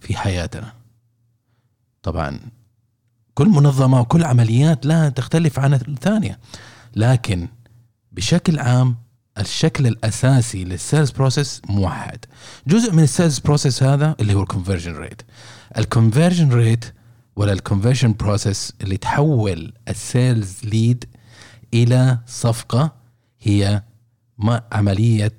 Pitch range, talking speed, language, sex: 105-130 Hz, 100 wpm, Arabic, male